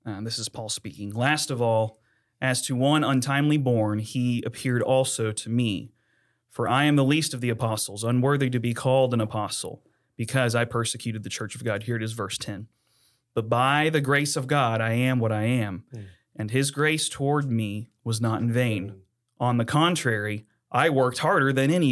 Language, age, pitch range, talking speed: English, 30-49, 110-130 Hz, 195 wpm